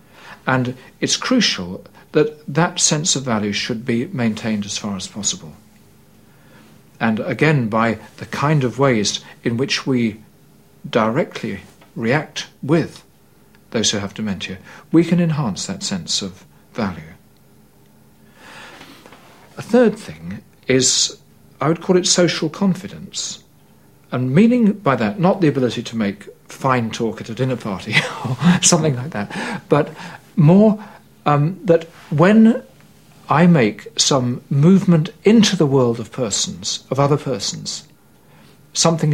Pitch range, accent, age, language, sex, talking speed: 125-180 Hz, British, 50-69, English, male, 130 wpm